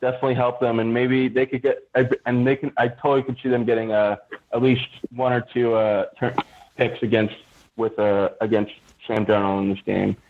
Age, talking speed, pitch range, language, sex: 20-39, 200 wpm, 105-125 Hz, English, male